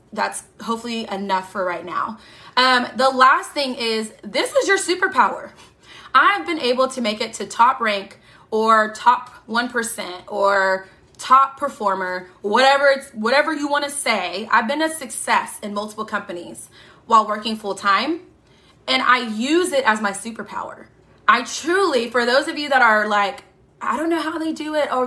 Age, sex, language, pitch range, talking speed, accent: 20-39, female, English, 215-290 Hz, 170 wpm, American